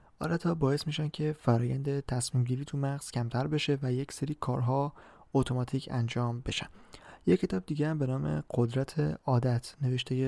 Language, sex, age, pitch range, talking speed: Persian, male, 20-39, 125-150 Hz, 150 wpm